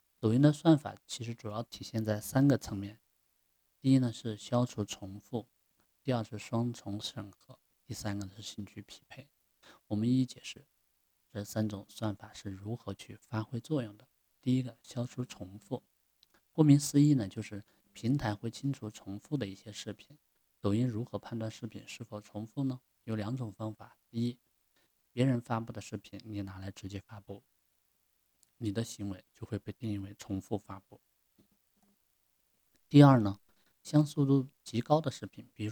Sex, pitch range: male, 105-125 Hz